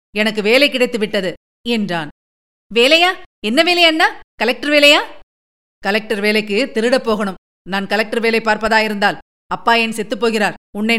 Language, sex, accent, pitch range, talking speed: Tamil, female, native, 200-275 Hz, 125 wpm